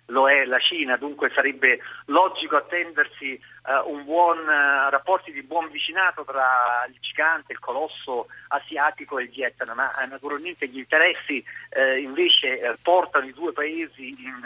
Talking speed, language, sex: 160 wpm, Italian, male